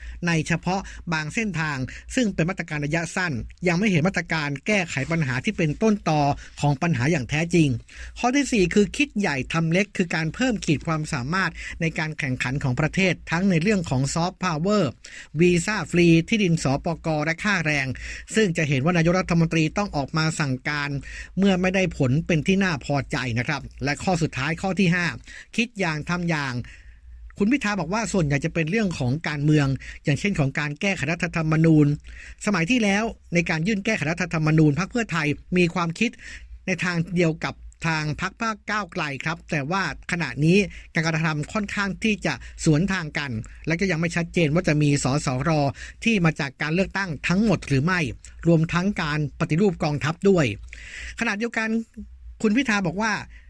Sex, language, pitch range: male, Thai, 150-195 Hz